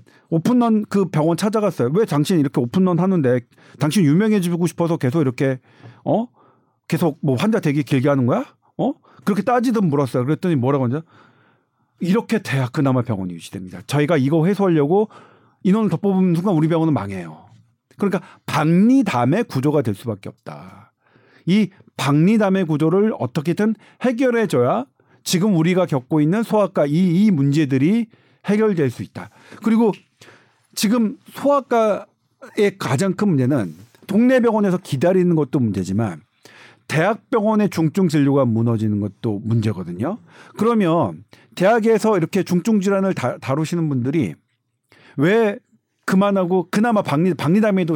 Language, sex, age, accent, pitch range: Korean, male, 40-59, native, 135-210 Hz